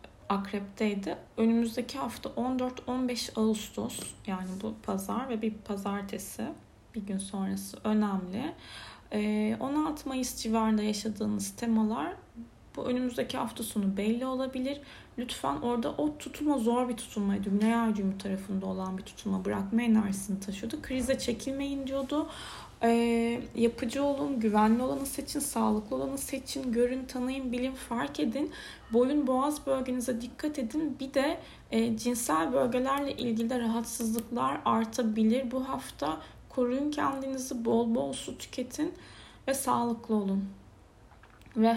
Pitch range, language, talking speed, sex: 215-260 Hz, Turkish, 120 wpm, female